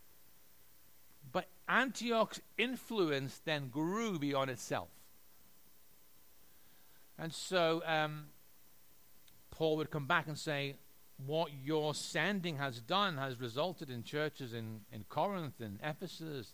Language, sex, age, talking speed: English, male, 50-69, 110 wpm